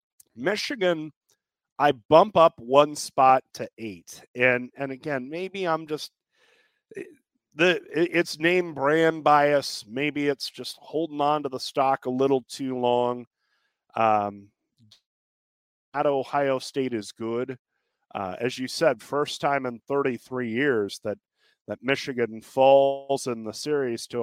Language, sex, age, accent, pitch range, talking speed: English, male, 40-59, American, 120-165 Hz, 135 wpm